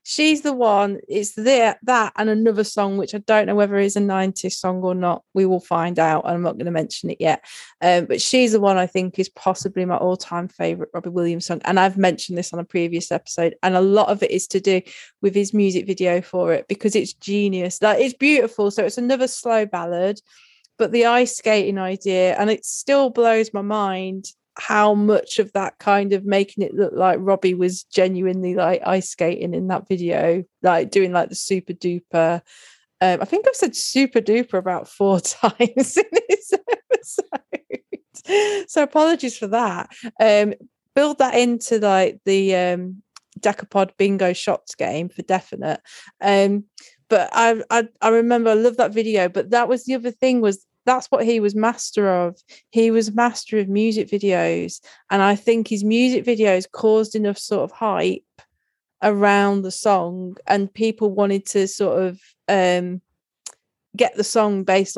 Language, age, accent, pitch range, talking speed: English, 30-49, British, 185-225 Hz, 185 wpm